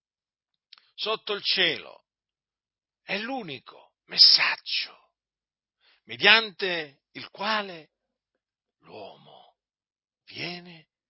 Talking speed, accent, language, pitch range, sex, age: 60 wpm, native, Italian, 130-175 Hz, male, 50-69